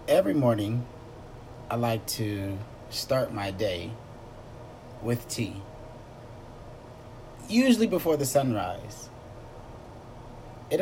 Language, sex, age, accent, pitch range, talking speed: English, male, 30-49, American, 120-125 Hz, 85 wpm